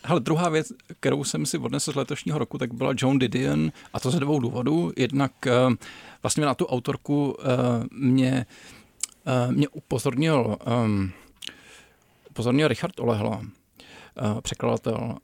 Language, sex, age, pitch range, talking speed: Czech, male, 40-59, 115-130 Hz, 125 wpm